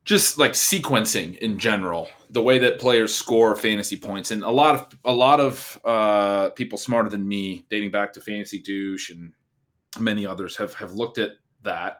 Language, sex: English, male